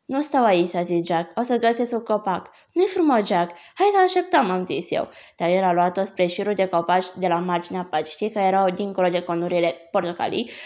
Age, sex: 20-39, female